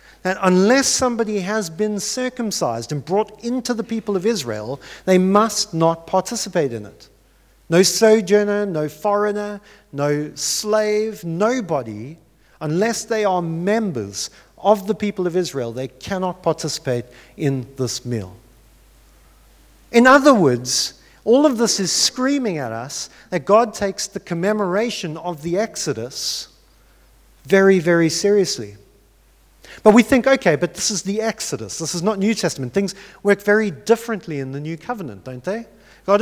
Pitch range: 145-210 Hz